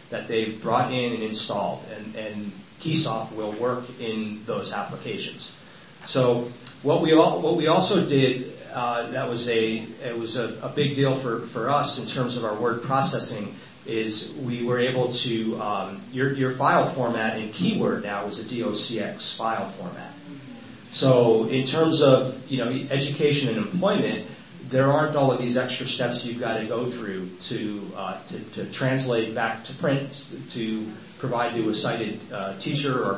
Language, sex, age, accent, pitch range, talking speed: English, male, 40-59, American, 115-135 Hz, 175 wpm